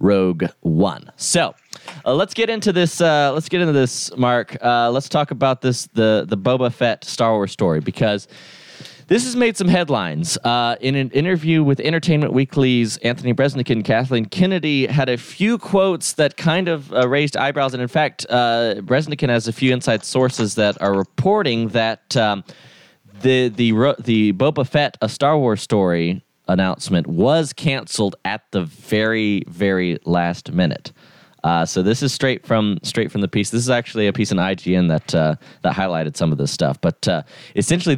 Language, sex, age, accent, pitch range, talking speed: English, male, 20-39, American, 110-150 Hz, 180 wpm